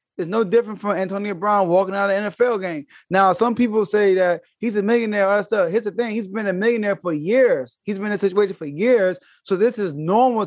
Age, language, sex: 20-39, English, male